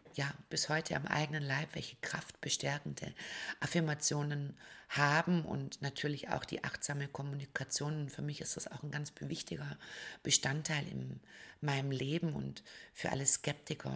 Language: German